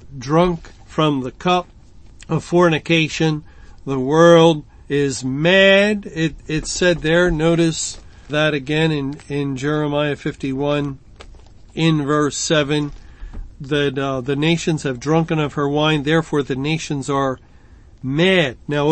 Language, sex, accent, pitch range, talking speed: English, male, American, 135-160 Hz, 125 wpm